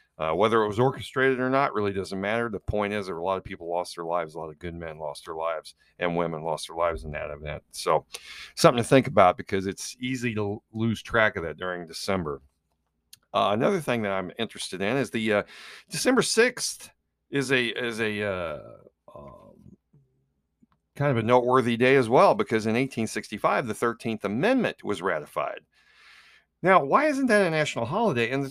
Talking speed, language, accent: 200 wpm, English, American